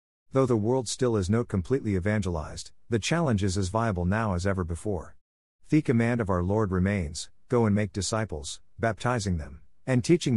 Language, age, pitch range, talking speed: English, 50-69, 85-115 Hz, 180 wpm